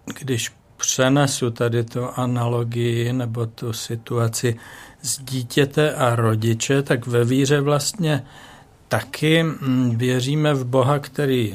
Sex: male